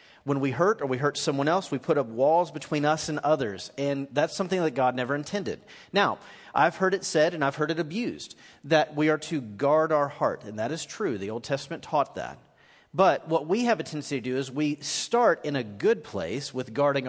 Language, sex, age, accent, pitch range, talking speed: English, male, 40-59, American, 135-175 Hz, 230 wpm